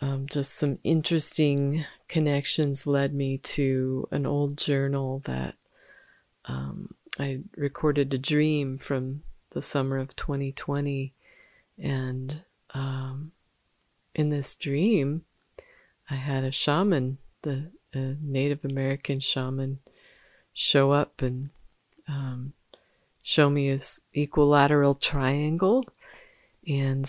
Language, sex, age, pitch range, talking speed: English, female, 40-59, 135-150 Hz, 100 wpm